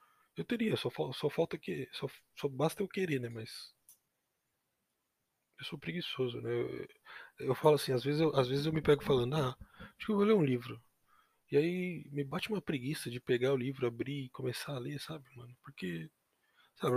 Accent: Brazilian